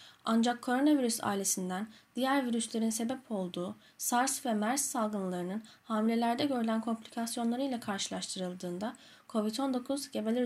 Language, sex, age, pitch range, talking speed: Turkish, female, 10-29, 215-255 Hz, 105 wpm